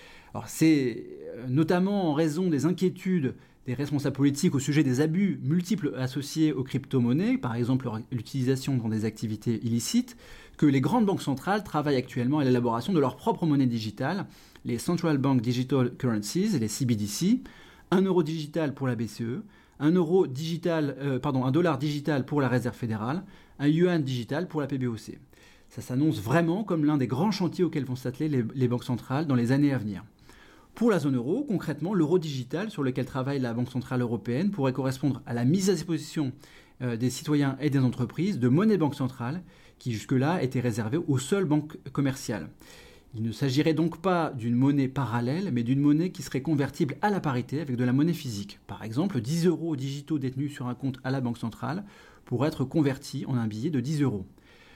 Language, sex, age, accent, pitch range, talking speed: French, male, 30-49, French, 125-160 Hz, 190 wpm